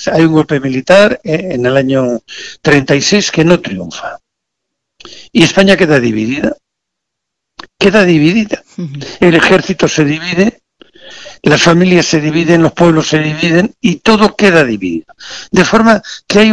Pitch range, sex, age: 145-200 Hz, male, 60-79